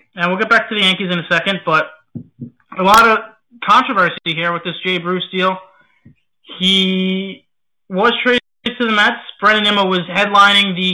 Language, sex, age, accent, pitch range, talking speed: English, male, 20-39, American, 185-240 Hz, 175 wpm